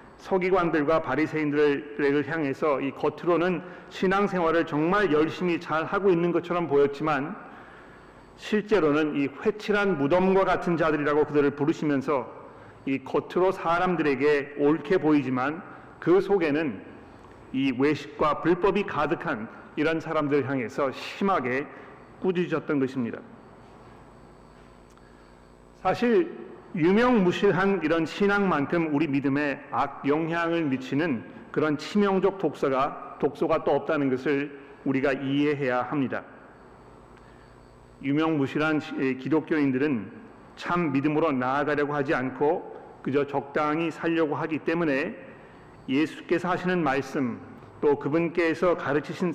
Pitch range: 140-180 Hz